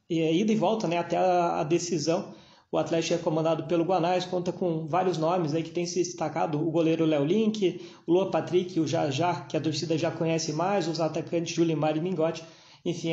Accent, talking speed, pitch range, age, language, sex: Brazilian, 200 wpm, 165-185 Hz, 20-39, Portuguese, male